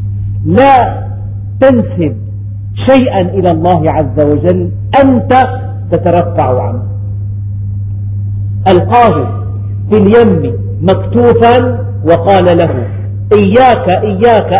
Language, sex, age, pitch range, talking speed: Arabic, male, 50-69, 100-105 Hz, 75 wpm